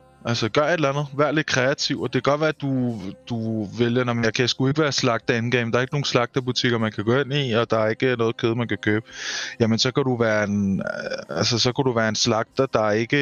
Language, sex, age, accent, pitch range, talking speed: Danish, male, 20-39, native, 115-140 Hz, 270 wpm